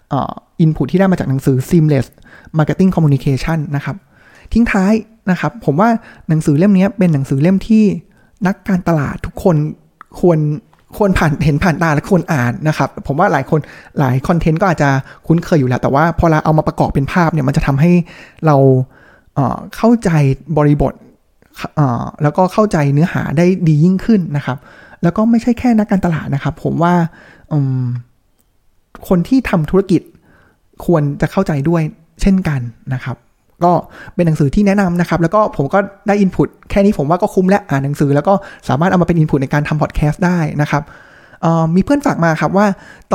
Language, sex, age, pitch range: Thai, male, 20-39, 145-190 Hz